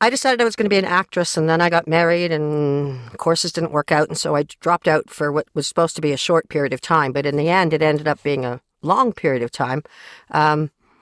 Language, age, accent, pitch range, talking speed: English, 50-69, American, 150-190 Hz, 265 wpm